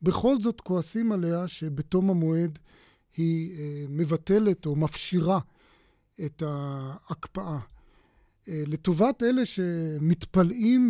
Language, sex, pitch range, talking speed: Hebrew, male, 155-200 Hz, 85 wpm